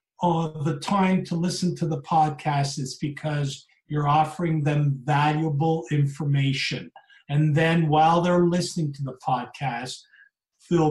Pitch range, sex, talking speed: 140-170 Hz, male, 130 wpm